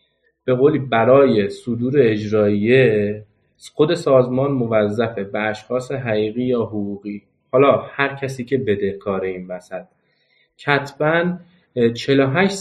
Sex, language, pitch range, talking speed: male, Persian, 105-130 Hz, 105 wpm